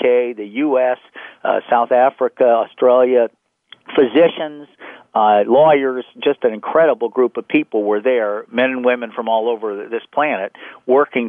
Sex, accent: male, American